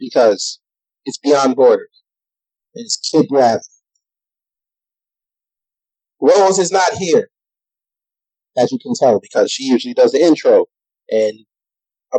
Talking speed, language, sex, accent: 115 wpm, English, male, American